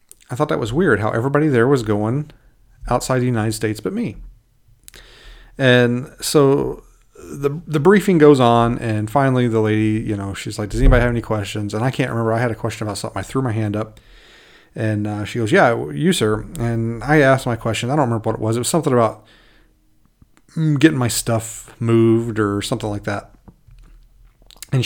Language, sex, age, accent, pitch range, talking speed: English, male, 40-59, American, 110-130 Hz, 200 wpm